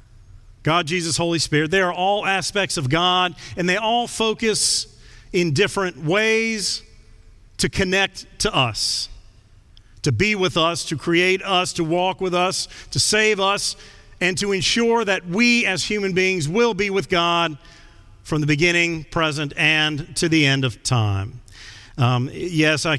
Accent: American